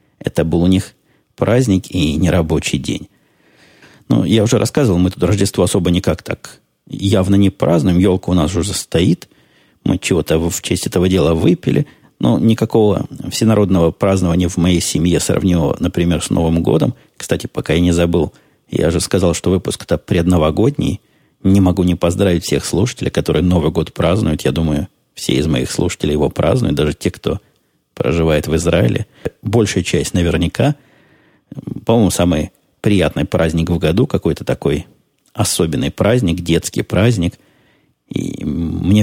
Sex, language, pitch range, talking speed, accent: male, Russian, 85-105 Hz, 150 wpm, native